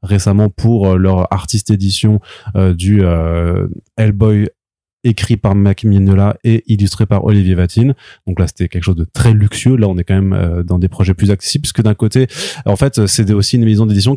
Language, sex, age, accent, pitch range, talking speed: French, male, 20-39, French, 100-120 Hz, 195 wpm